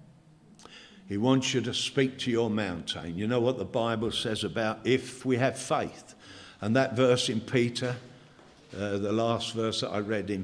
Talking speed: 185 wpm